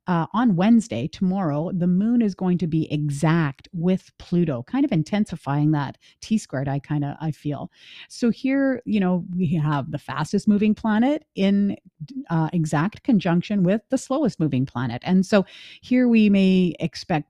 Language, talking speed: English, 170 wpm